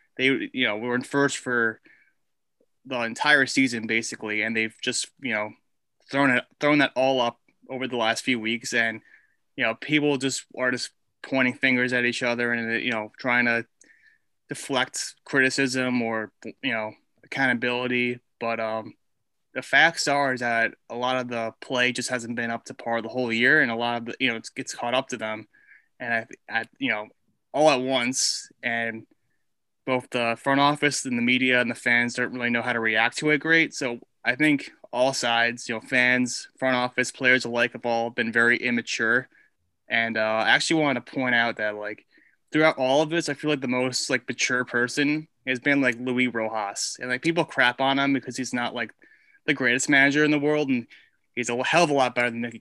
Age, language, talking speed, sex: 20-39, English, 210 wpm, male